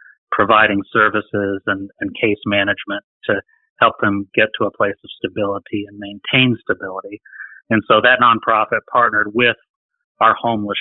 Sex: male